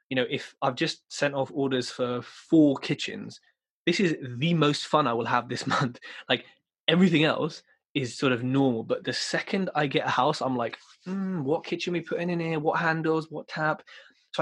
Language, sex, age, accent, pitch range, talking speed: English, male, 20-39, British, 125-160 Hz, 210 wpm